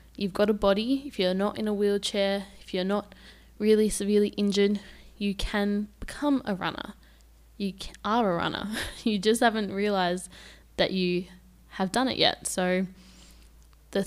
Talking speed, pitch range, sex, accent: 160 wpm, 175-205 Hz, female, Australian